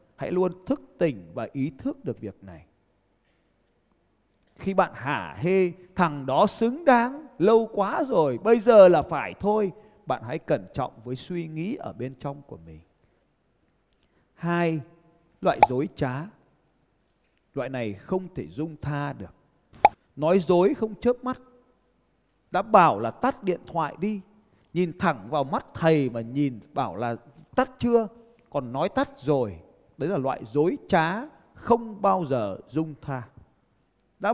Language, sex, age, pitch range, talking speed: Vietnamese, male, 30-49, 140-225 Hz, 150 wpm